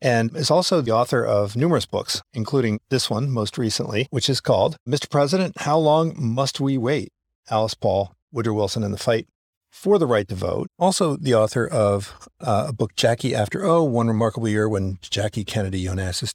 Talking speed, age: 190 wpm, 50-69